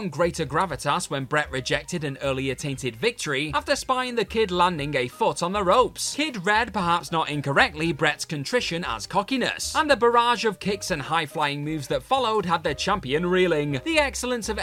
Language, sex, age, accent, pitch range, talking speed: English, male, 30-49, British, 145-225 Hz, 185 wpm